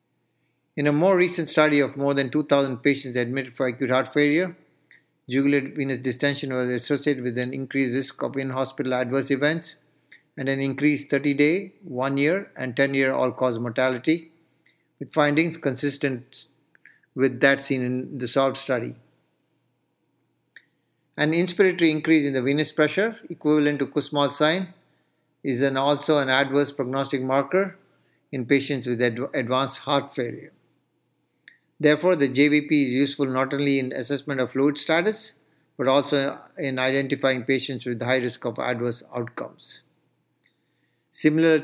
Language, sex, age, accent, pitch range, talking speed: English, male, 50-69, Indian, 135-150 Hz, 140 wpm